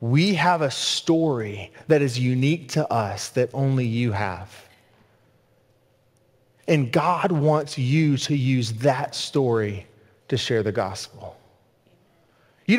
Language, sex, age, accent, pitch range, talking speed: English, male, 30-49, American, 125-180 Hz, 120 wpm